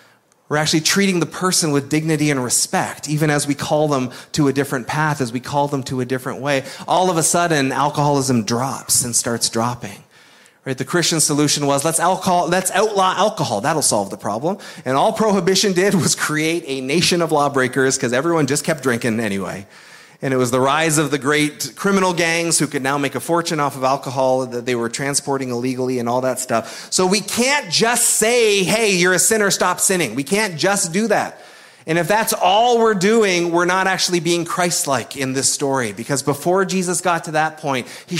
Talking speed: 205 wpm